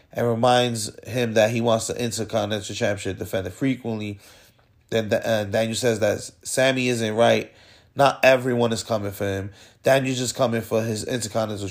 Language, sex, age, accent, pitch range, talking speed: English, male, 30-49, American, 105-130 Hz, 155 wpm